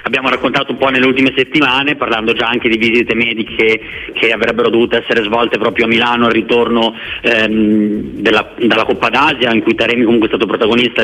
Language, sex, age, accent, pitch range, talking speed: Italian, male, 30-49, native, 115-135 Hz, 195 wpm